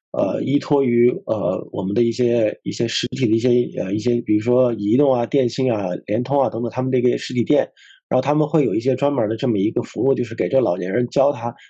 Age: 20-39